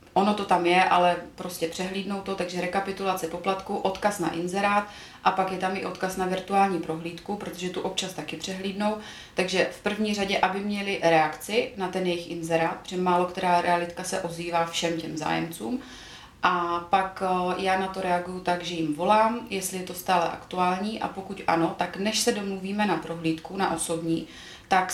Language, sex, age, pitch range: Czech, female, 30-49, 175-190 Hz